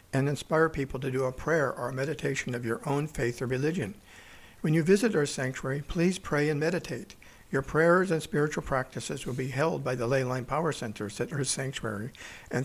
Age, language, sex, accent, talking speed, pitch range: 60-79, English, male, American, 205 wpm, 130-160 Hz